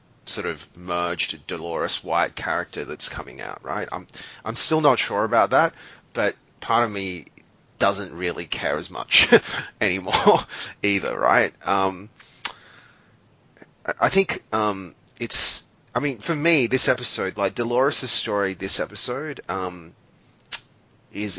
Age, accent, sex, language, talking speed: 30-49, Australian, male, English, 130 wpm